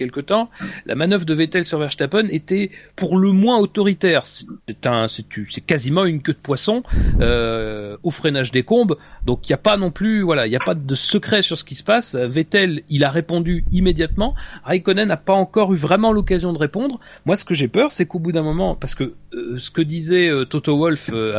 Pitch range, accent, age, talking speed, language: 130-190 Hz, French, 40-59, 225 wpm, French